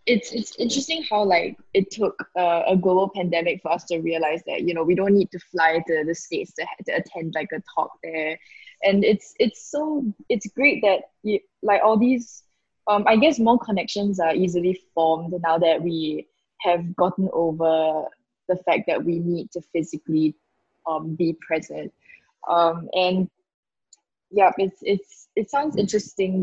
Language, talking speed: English, 170 wpm